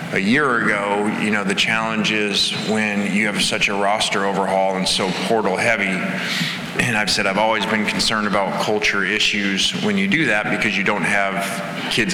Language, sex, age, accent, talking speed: English, male, 20-39, American, 190 wpm